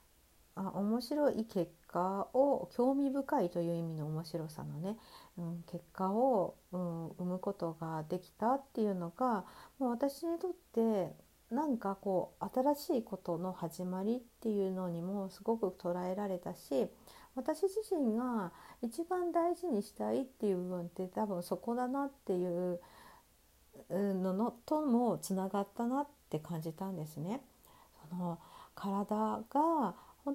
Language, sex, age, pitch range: Japanese, female, 50-69, 180-250 Hz